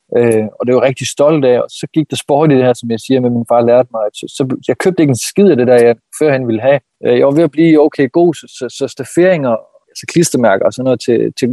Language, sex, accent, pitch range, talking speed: Danish, male, native, 120-145 Hz, 280 wpm